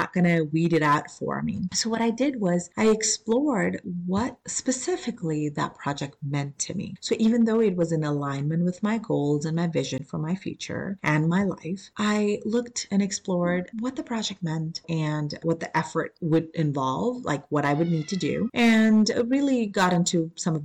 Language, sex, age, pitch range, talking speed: English, female, 30-49, 160-235 Hz, 195 wpm